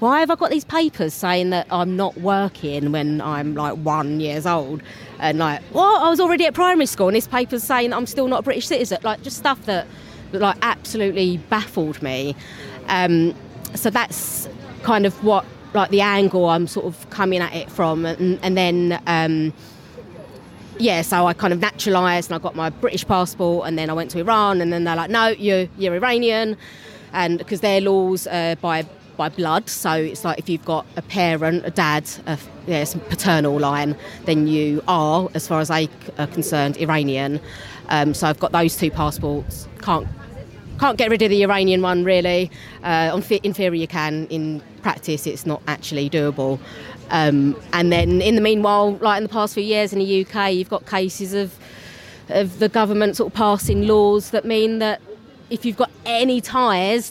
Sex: female